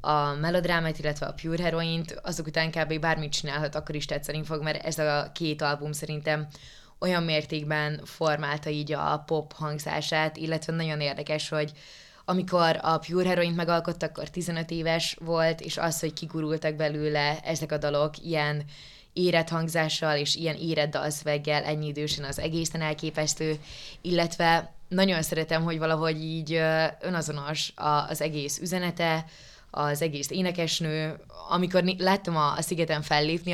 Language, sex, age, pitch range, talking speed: Hungarian, female, 20-39, 150-165 Hz, 140 wpm